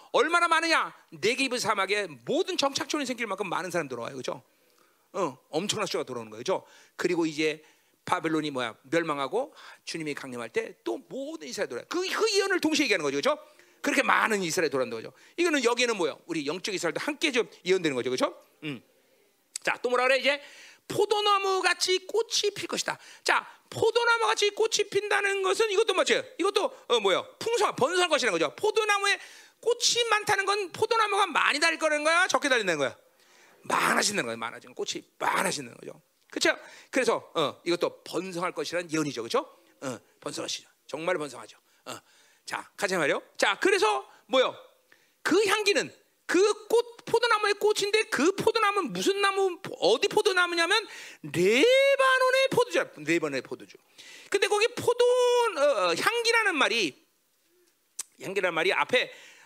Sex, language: male, Korean